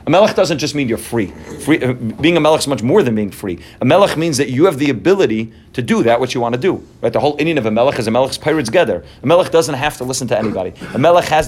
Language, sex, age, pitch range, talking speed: English, male, 30-49, 115-155 Hz, 300 wpm